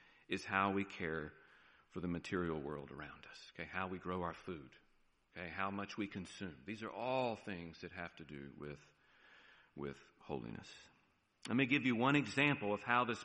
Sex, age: male, 40-59